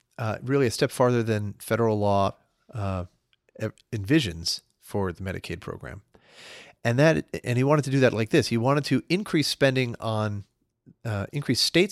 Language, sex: English, male